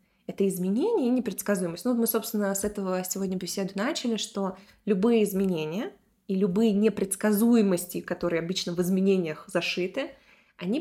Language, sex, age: Russian, female, 20-39